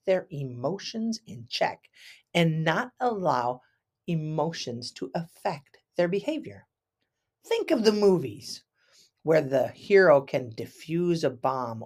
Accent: American